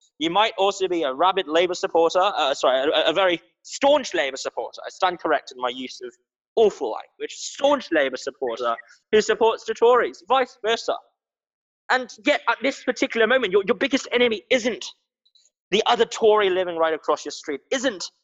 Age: 10-29